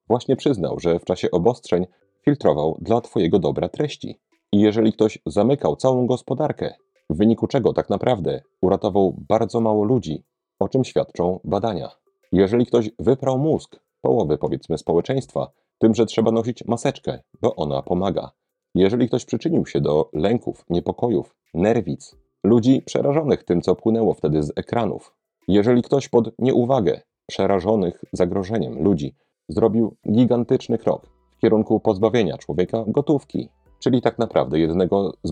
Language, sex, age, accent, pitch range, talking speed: Polish, male, 40-59, native, 90-125 Hz, 140 wpm